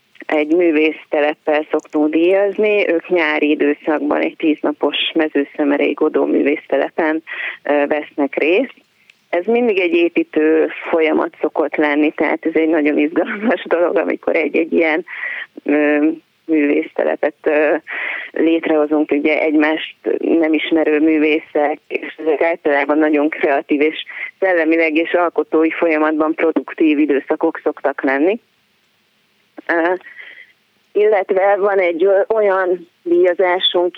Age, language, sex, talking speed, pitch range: 30-49, Hungarian, female, 95 wpm, 150-180 Hz